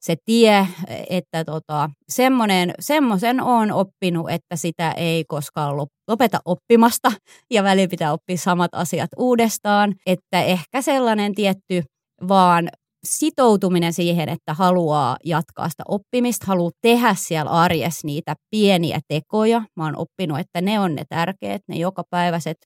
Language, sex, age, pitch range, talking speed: Finnish, female, 30-49, 165-205 Hz, 130 wpm